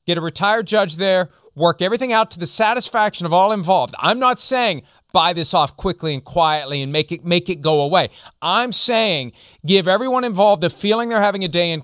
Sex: male